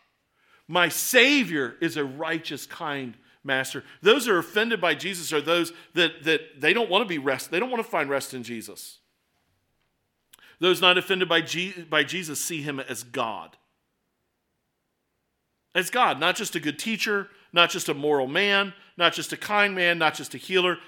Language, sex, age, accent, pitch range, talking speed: English, male, 40-59, American, 145-200 Hz, 180 wpm